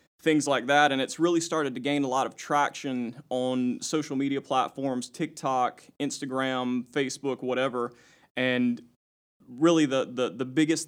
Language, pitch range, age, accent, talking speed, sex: English, 130-150 Hz, 30-49, American, 150 wpm, male